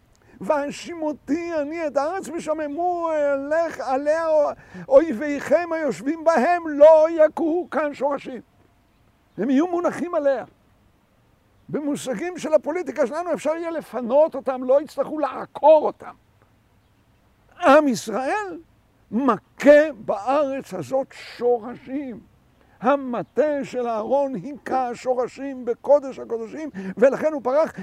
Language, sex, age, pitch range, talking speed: Hebrew, male, 60-79, 230-305 Hz, 105 wpm